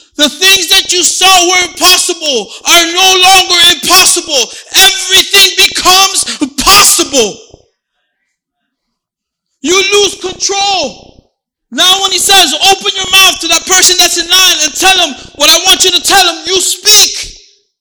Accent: American